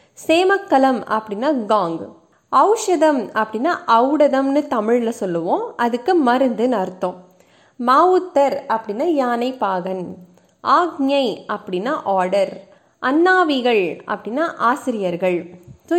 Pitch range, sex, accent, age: 205-315 Hz, female, native, 20-39